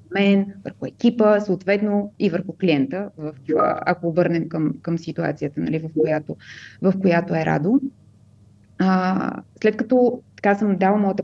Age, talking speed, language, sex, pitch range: 20-39, 150 wpm, Bulgarian, female, 165-195 Hz